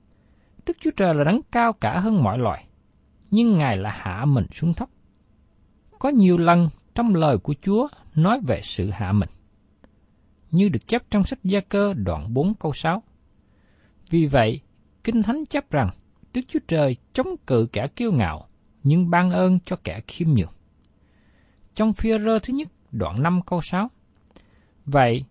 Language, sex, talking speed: Vietnamese, male, 170 wpm